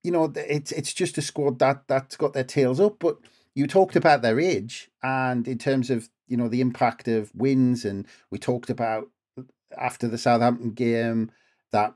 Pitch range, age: 115-135 Hz, 40-59